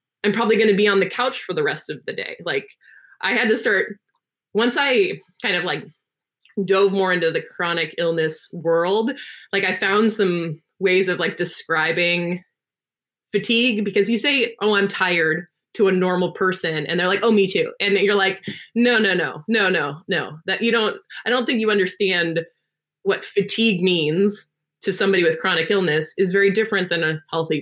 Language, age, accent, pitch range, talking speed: English, 20-39, American, 165-210 Hz, 190 wpm